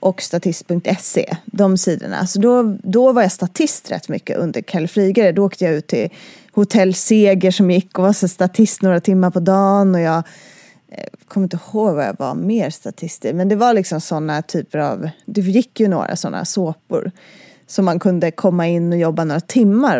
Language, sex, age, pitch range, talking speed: English, female, 20-39, 180-225 Hz, 195 wpm